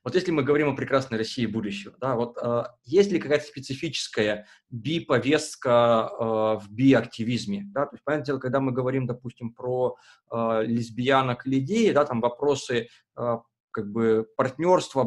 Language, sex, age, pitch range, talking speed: Russian, male, 20-39, 110-140 Hz, 150 wpm